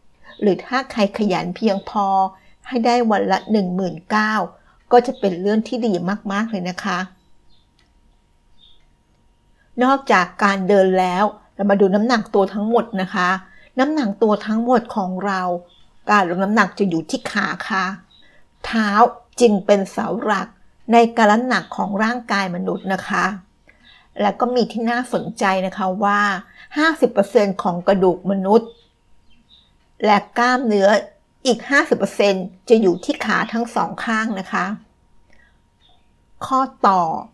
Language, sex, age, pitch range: Thai, female, 60-79, 190-240 Hz